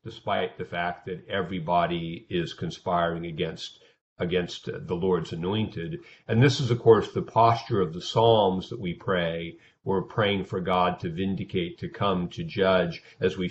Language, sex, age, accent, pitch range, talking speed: English, male, 50-69, American, 90-110 Hz, 165 wpm